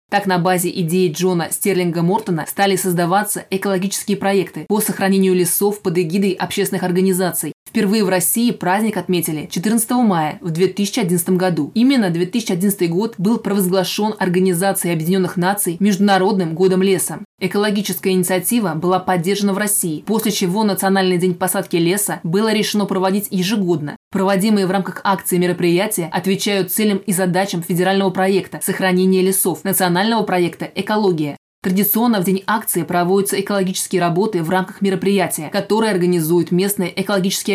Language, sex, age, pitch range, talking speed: Russian, female, 20-39, 180-200 Hz, 145 wpm